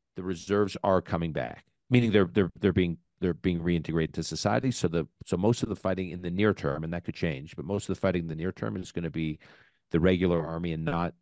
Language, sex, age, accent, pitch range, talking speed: English, male, 50-69, American, 85-100 Hz, 255 wpm